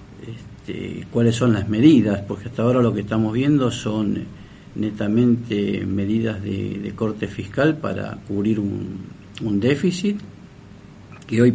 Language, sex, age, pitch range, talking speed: Spanish, male, 50-69, 100-120 Hz, 130 wpm